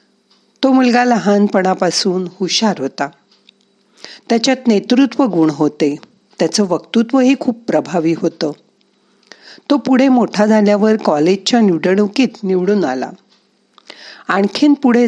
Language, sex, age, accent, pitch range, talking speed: Marathi, female, 50-69, native, 175-240 Hz, 100 wpm